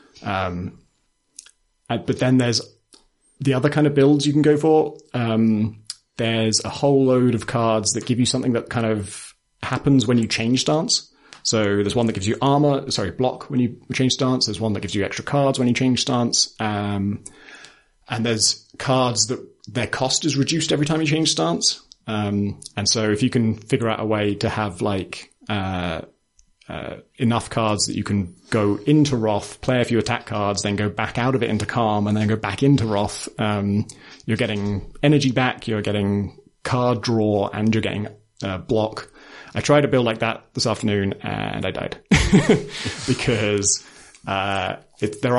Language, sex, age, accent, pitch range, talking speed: English, male, 30-49, British, 105-130 Hz, 190 wpm